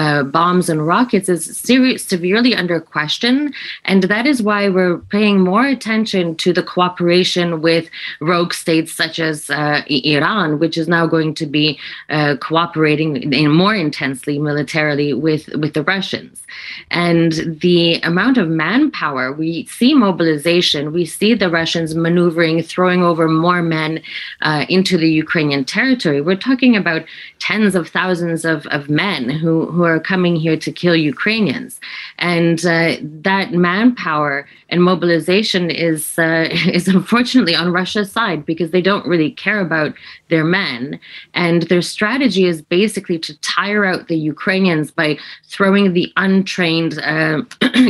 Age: 20-39